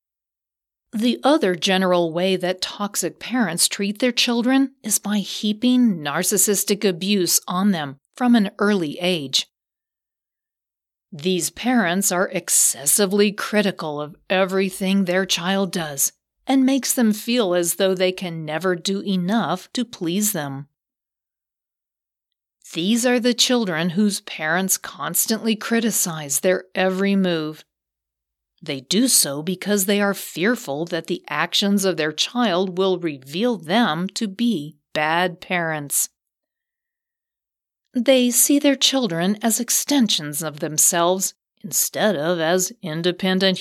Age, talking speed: 40-59, 120 wpm